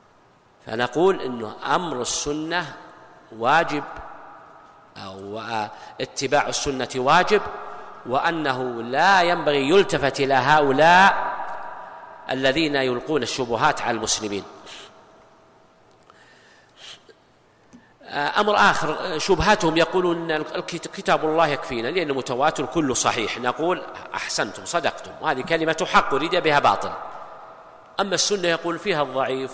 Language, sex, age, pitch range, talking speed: Arabic, male, 50-69, 135-190 Hz, 90 wpm